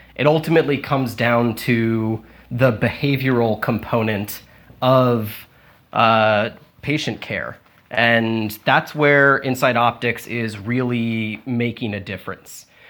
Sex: male